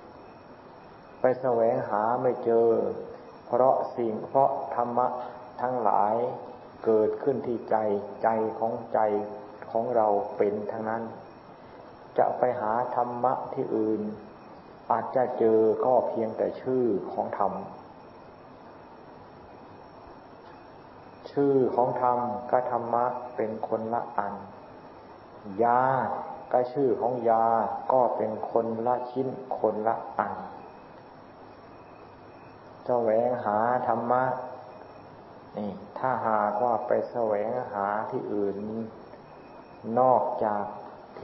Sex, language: male, Thai